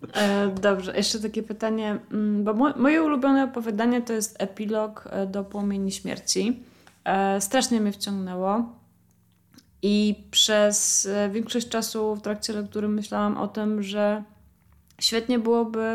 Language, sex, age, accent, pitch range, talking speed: Polish, female, 20-39, native, 180-210 Hz, 115 wpm